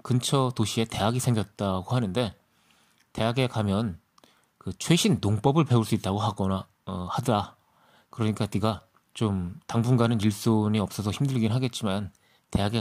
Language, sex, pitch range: Korean, male, 100-130 Hz